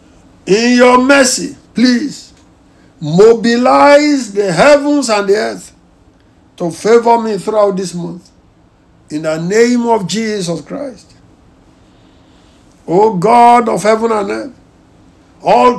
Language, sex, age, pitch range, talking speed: English, male, 60-79, 200-255 Hz, 110 wpm